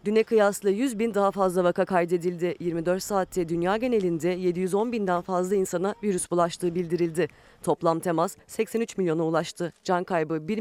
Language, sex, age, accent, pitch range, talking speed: Turkish, female, 40-59, native, 175-220 Hz, 155 wpm